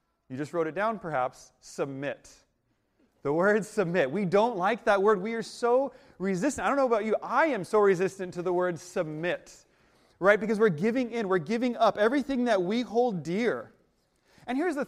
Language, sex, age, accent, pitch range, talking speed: English, male, 30-49, American, 175-235 Hz, 195 wpm